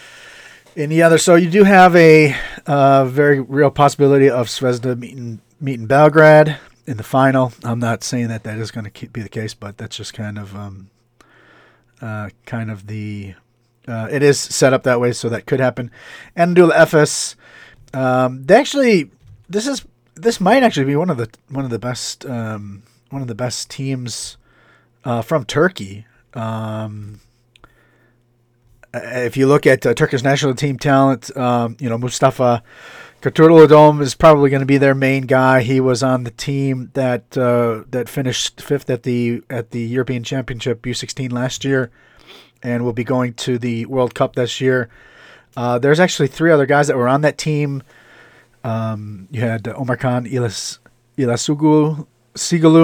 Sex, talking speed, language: male, 170 wpm, English